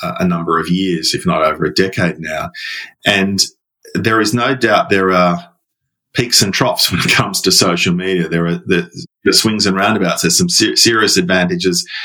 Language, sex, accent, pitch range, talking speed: English, male, Australian, 90-115 Hz, 180 wpm